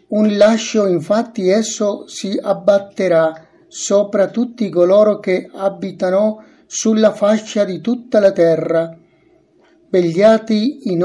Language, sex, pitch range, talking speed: Spanish, male, 175-215 Hz, 105 wpm